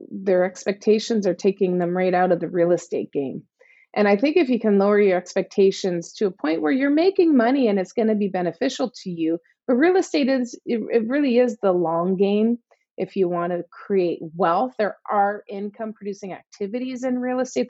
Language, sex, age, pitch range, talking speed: English, female, 30-49, 185-245 Hz, 205 wpm